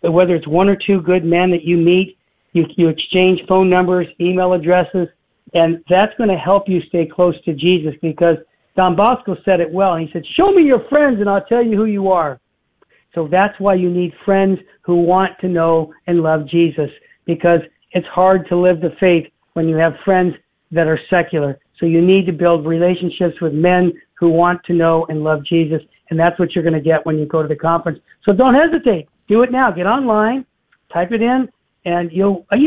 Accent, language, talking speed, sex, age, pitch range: American, English, 210 wpm, male, 50-69, 170-205 Hz